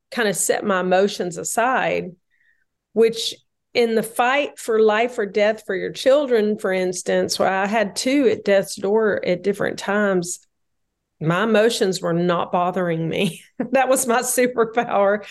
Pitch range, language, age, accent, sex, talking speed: 185-230 Hz, English, 40-59, American, female, 155 wpm